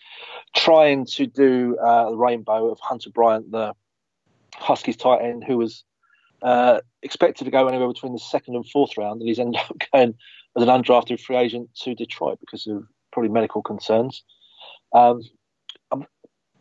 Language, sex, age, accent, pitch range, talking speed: English, male, 40-59, British, 110-130 Hz, 160 wpm